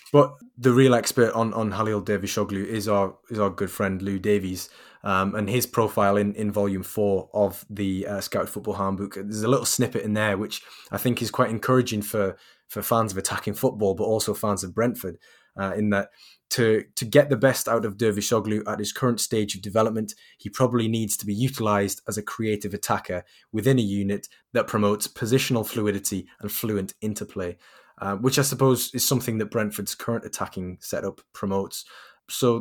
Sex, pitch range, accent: male, 100-115 Hz, British